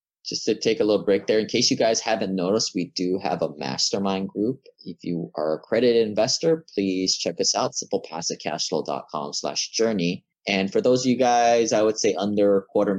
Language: English